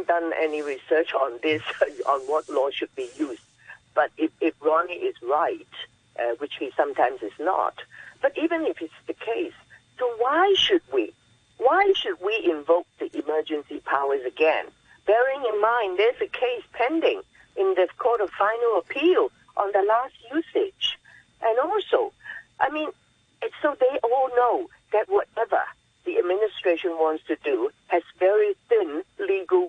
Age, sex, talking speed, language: 50-69, female, 155 wpm, English